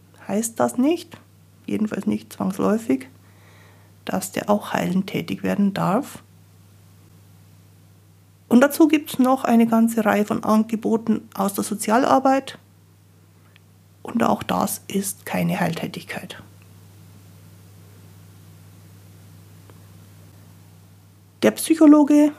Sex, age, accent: female, 60-79, German